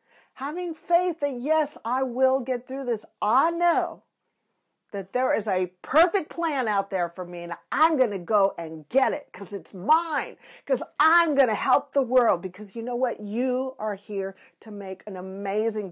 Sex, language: female, English